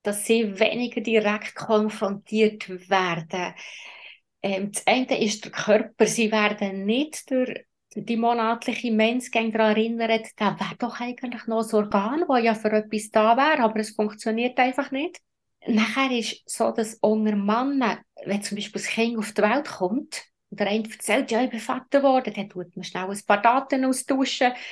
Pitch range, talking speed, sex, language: 205-235 Hz, 170 wpm, female, German